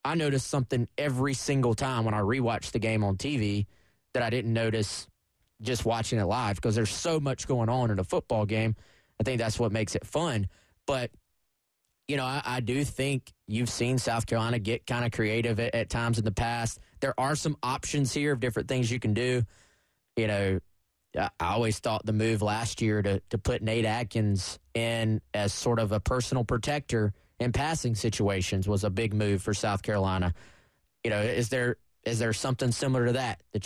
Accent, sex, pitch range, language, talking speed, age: American, male, 105-125 Hz, English, 200 wpm, 20-39